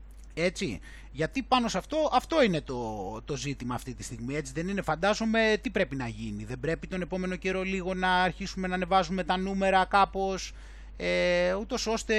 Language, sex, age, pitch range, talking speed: Greek, male, 20-39, 140-210 Hz, 180 wpm